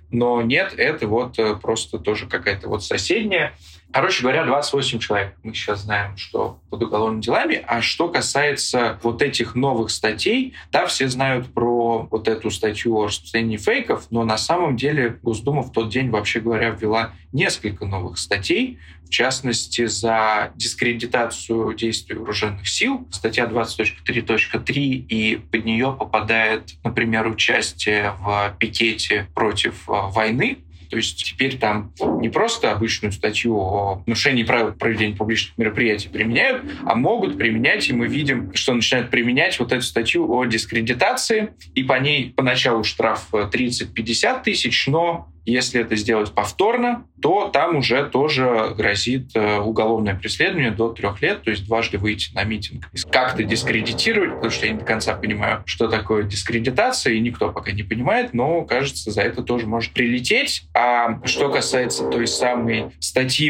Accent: native